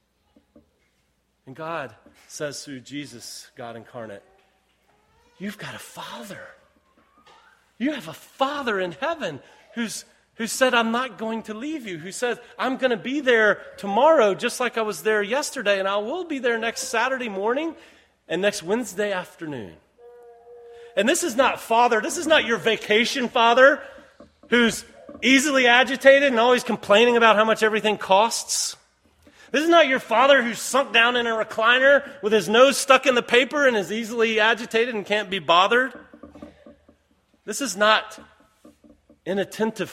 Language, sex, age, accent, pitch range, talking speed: English, male, 30-49, American, 170-250 Hz, 155 wpm